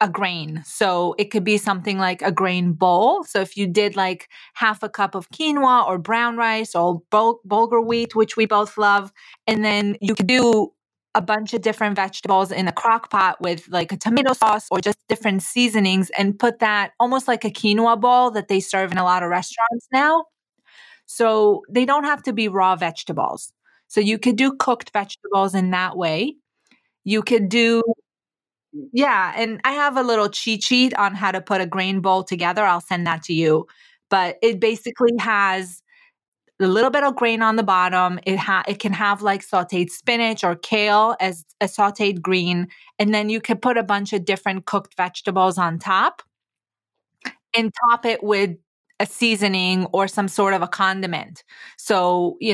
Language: English